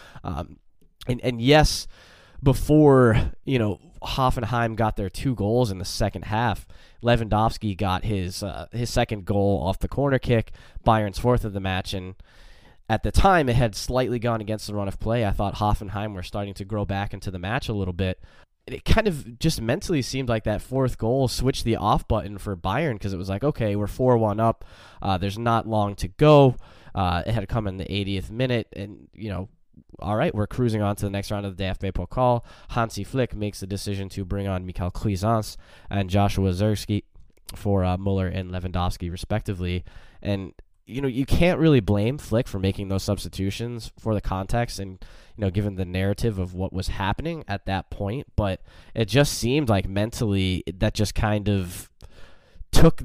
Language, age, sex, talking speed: English, 10-29, male, 195 wpm